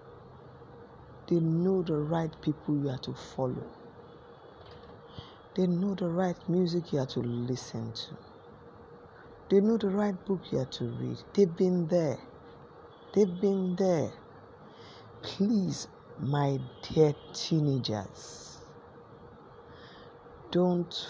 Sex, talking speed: female, 110 wpm